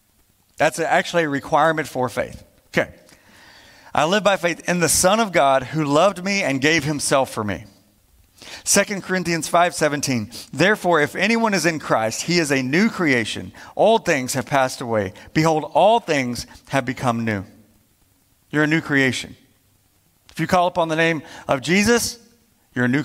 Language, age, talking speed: English, 40-59, 165 wpm